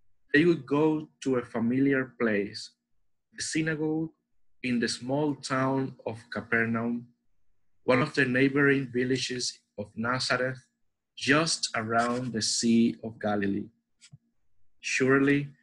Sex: male